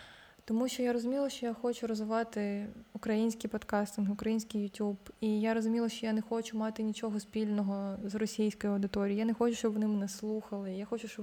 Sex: female